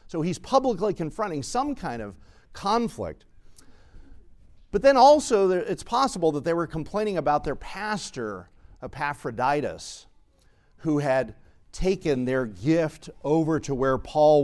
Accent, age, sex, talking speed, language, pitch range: American, 50-69, male, 125 wpm, English, 120-175 Hz